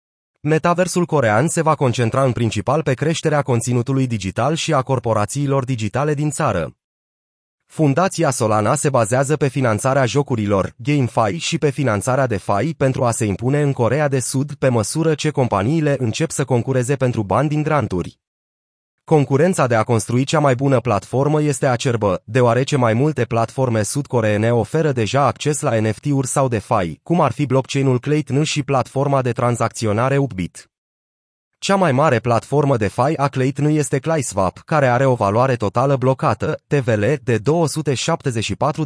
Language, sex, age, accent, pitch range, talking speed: Romanian, male, 30-49, native, 115-145 Hz, 155 wpm